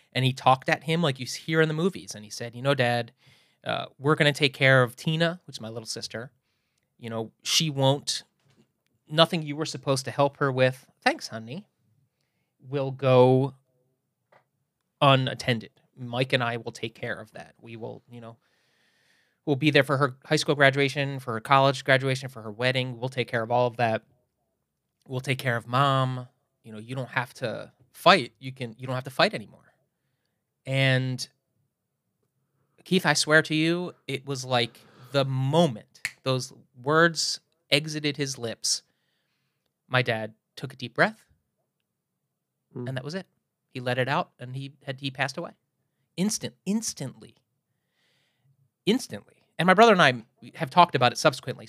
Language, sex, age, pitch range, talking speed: English, male, 30-49, 125-145 Hz, 170 wpm